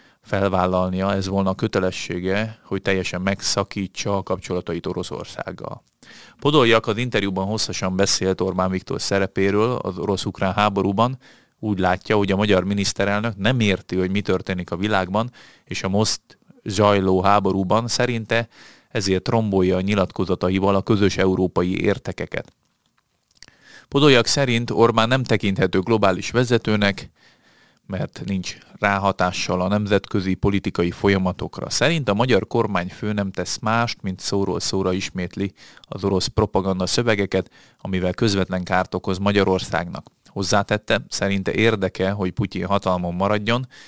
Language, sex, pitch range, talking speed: Hungarian, male, 95-110 Hz, 120 wpm